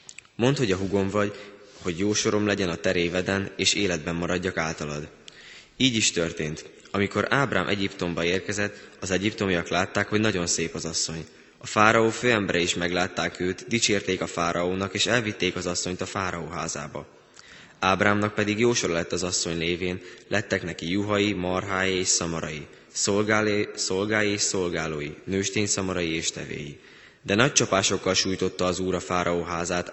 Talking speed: 150 wpm